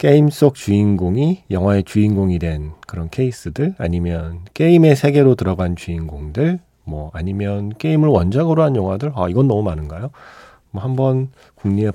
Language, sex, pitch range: Korean, male, 95-135 Hz